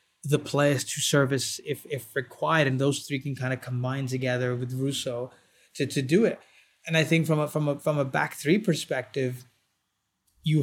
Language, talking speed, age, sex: English, 190 wpm, 20-39, male